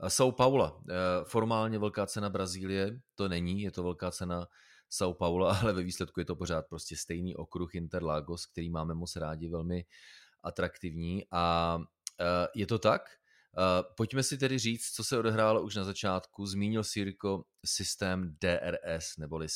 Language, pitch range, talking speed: Czech, 85-105 Hz, 150 wpm